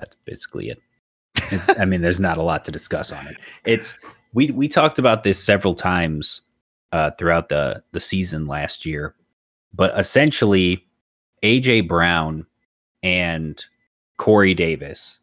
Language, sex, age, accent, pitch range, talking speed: English, male, 30-49, American, 85-105 Hz, 140 wpm